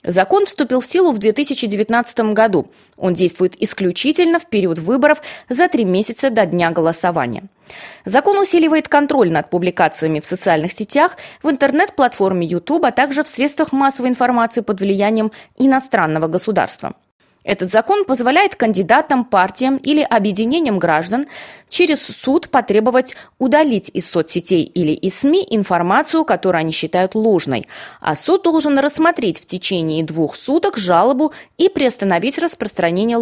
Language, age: Russian, 20-39